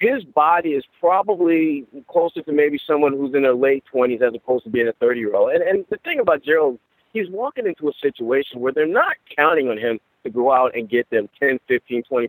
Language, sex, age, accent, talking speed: English, male, 40-59, American, 230 wpm